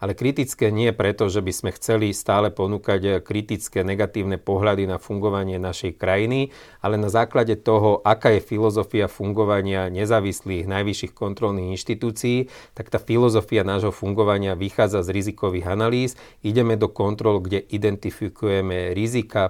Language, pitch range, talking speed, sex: Slovak, 95-110 Hz, 135 wpm, male